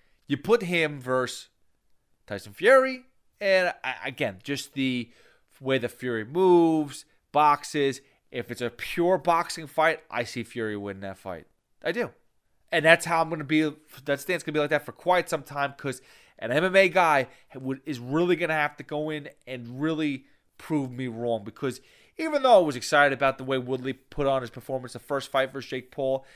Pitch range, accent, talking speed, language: 125-170 Hz, American, 195 wpm, English